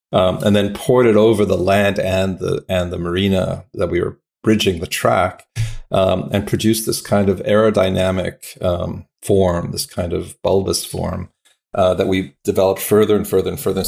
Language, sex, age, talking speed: English, male, 40-59, 185 wpm